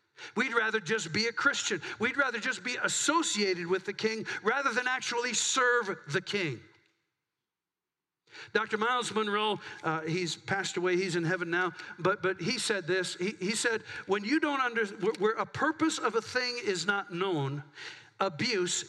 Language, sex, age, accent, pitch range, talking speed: English, male, 50-69, American, 175-230 Hz, 170 wpm